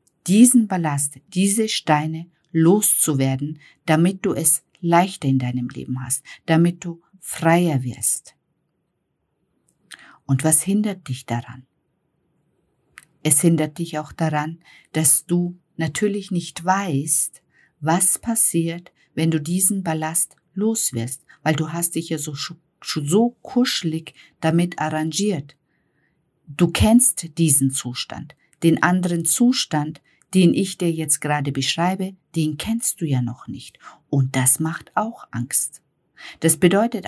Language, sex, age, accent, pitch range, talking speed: German, female, 50-69, German, 150-180 Hz, 120 wpm